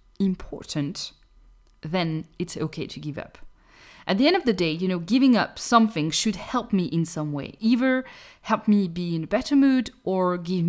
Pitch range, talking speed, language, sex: 170-235 Hz, 190 wpm, English, female